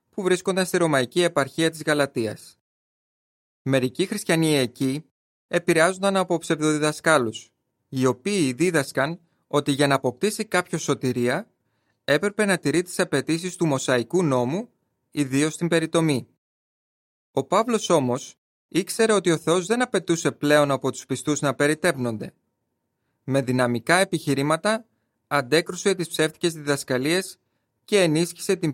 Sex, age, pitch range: male, 30-49, 135-175 Hz